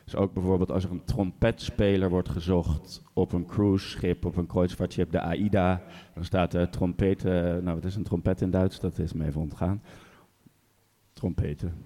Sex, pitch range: male, 85-105 Hz